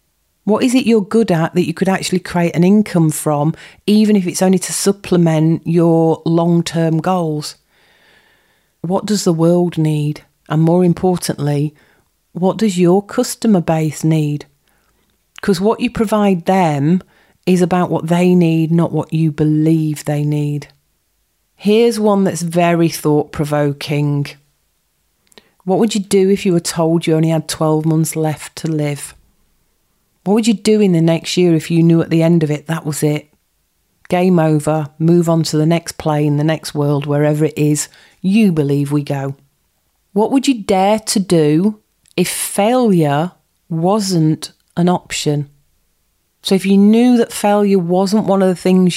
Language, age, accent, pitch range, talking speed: English, 40-59, British, 150-185 Hz, 165 wpm